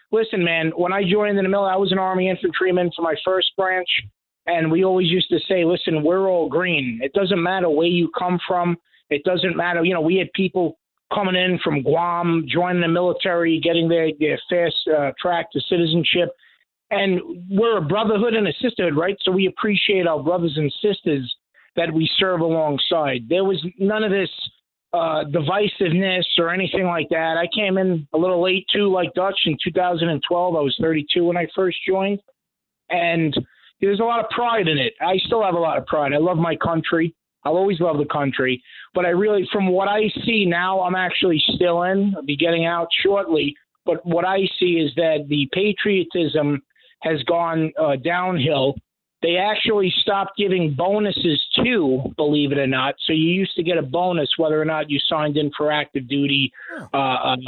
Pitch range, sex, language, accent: 155-190 Hz, male, English, American